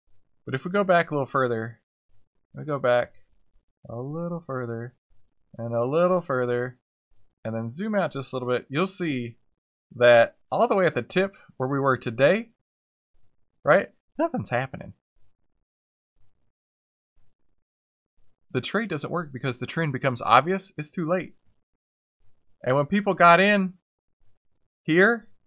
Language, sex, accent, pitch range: English, male, American, 95-140 Hz